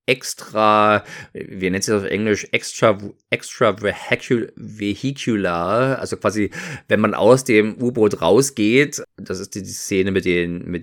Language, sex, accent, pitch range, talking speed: German, male, German, 95-110 Hz, 140 wpm